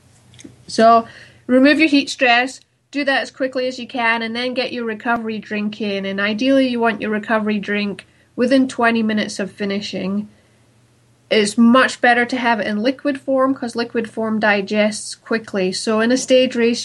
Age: 30-49